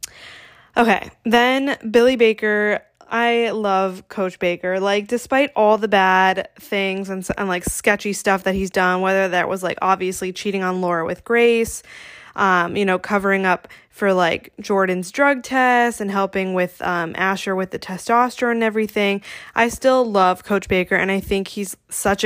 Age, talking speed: 10-29, 165 wpm